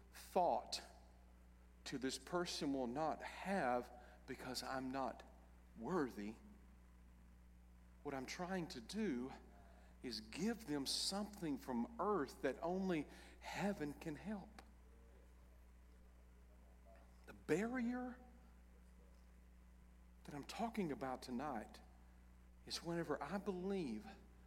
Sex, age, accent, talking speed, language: male, 50-69, American, 95 wpm, English